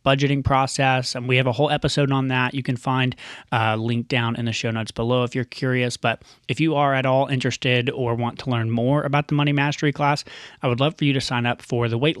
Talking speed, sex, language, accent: 255 wpm, male, English, American